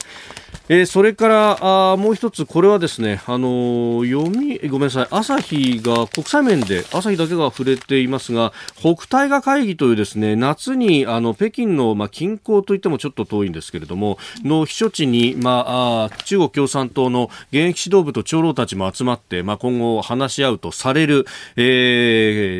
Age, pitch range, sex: 40-59, 105-160 Hz, male